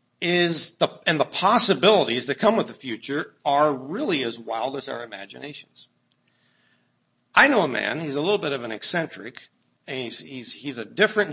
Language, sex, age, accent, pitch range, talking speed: English, male, 50-69, American, 135-195 Hz, 180 wpm